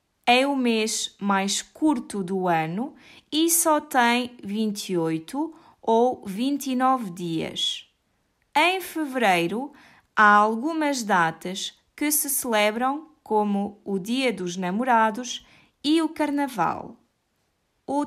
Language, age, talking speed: Portuguese, 20-39, 105 wpm